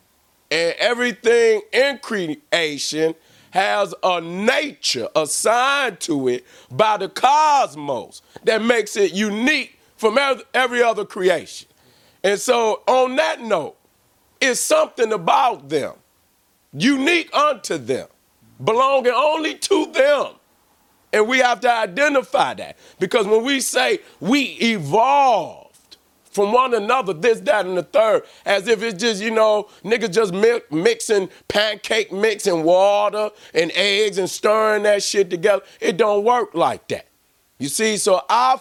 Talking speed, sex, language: 135 wpm, male, English